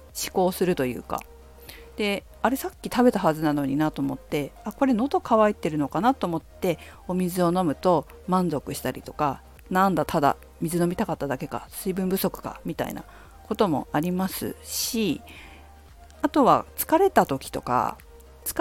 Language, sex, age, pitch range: Japanese, female, 50-69, 155-250 Hz